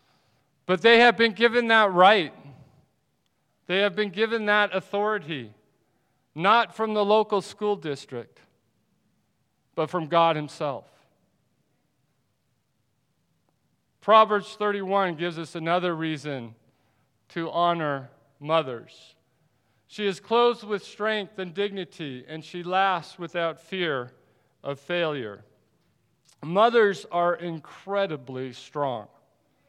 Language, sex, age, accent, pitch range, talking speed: English, male, 40-59, American, 145-190 Hz, 100 wpm